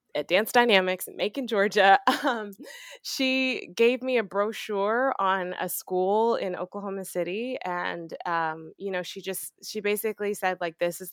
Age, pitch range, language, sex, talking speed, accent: 20-39, 160-195 Hz, English, female, 160 wpm, American